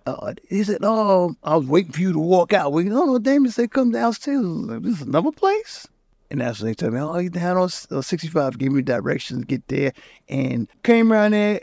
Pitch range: 140-185 Hz